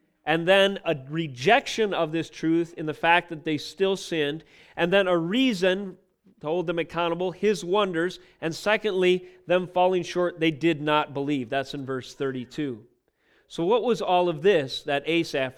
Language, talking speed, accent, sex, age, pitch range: English, 175 wpm, American, male, 40-59, 145-190 Hz